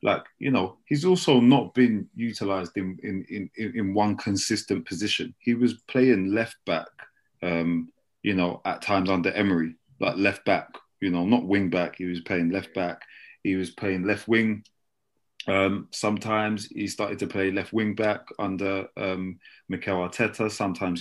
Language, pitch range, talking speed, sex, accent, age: English, 90-110 Hz, 150 wpm, male, British, 30-49